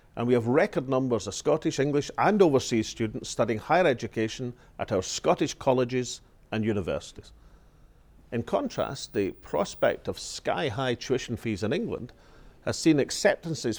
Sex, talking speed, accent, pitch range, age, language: male, 145 wpm, British, 110-130 Hz, 50-69, English